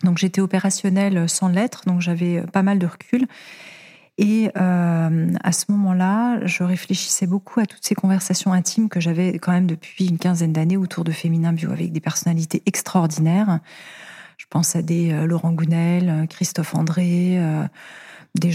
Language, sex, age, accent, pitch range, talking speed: French, female, 30-49, French, 170-195 Hz, 160 wpm